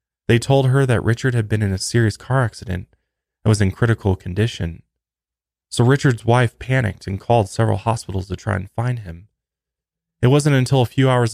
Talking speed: 190 wpm